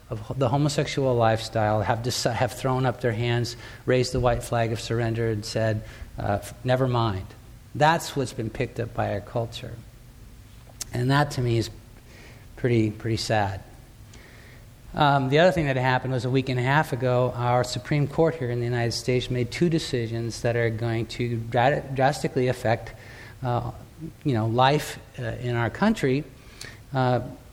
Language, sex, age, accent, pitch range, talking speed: English, male, 50-69, American, 115-130 Hz, 170 wpm